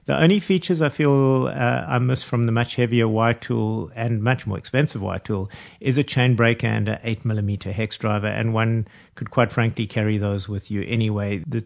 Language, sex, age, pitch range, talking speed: English, male, 50-69, 105-130 Hz, 210 wpm